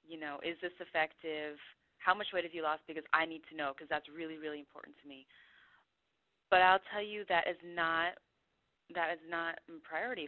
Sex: female